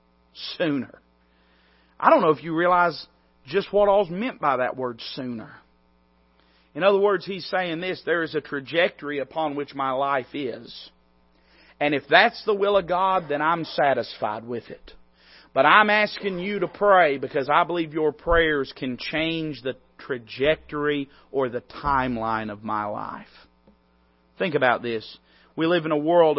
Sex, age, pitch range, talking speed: male, 40-59, 130-185 Hz, 160 wpm